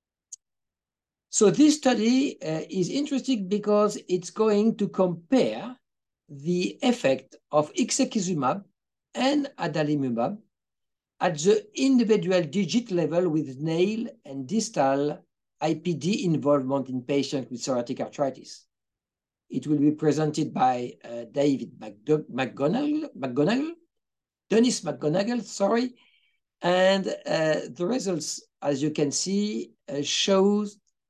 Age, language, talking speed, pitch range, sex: 60-79, English, 105 wpm, 140-220 Hz, male